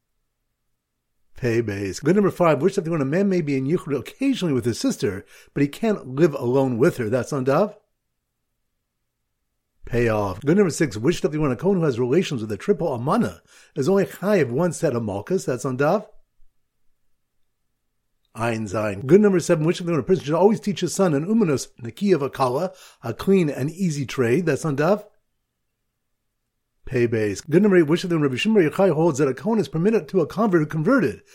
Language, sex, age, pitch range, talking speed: English, male, 50-69, 130-195 Hz, 205 wpm